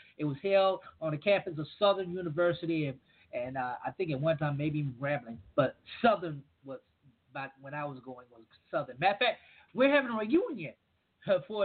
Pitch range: 145-180 Hz